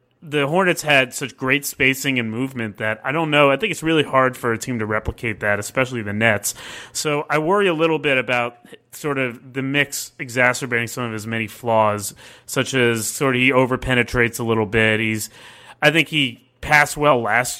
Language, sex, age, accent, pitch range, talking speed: English, male, 30-49, American, 120-150 Hz, 200 wpm